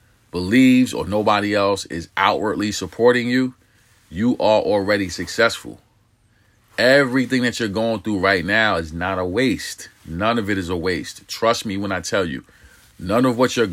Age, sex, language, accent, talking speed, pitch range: 40-59, male, English, American, 170 wpm, 95-115 Hz